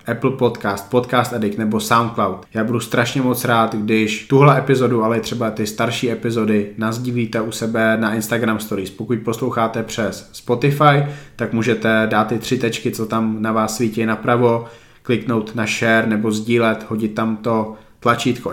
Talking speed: 165 wpm